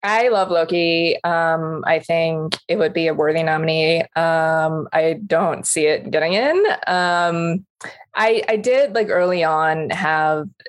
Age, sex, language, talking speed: 20-39, female, English, 150 wpm